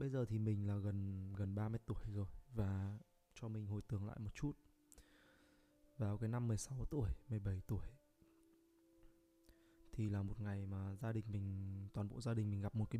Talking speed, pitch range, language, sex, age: 190 wpm, 100-125 Hz, Vietnamese, male, 20-39